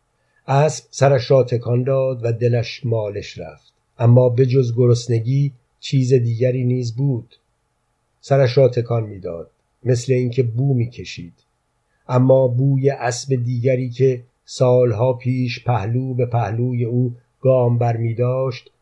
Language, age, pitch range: Persian, 50-69, 120-130 Hz